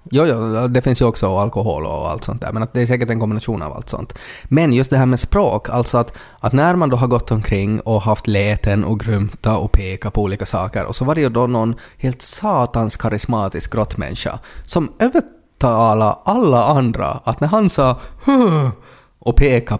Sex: male